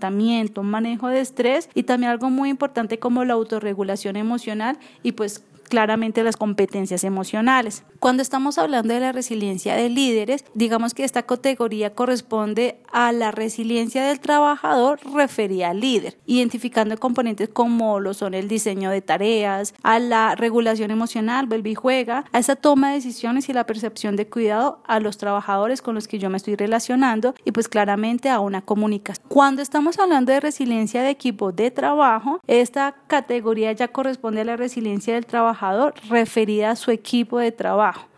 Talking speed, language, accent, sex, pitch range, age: 165 wpm, Spanish, Colombian, female, 215-255 Hz, 30-49